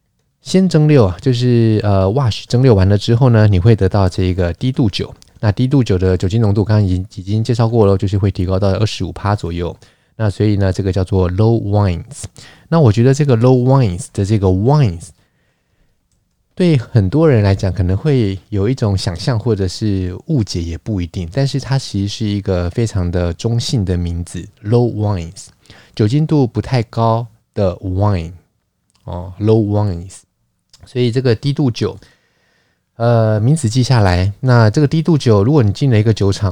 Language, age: Chinese, 20-39